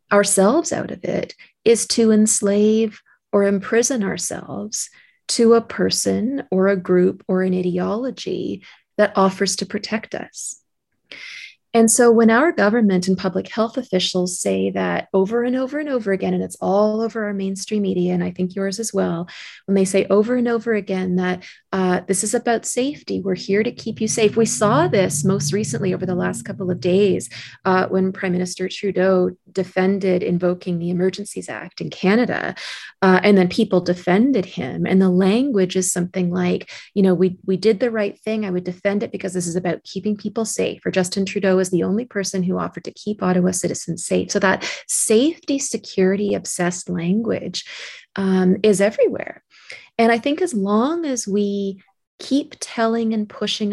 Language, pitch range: English, 185-225 Hz